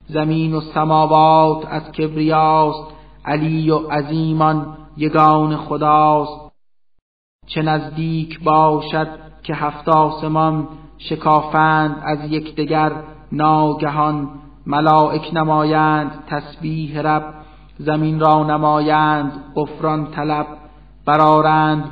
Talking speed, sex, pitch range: 80 wpm, male, 150-155 Hz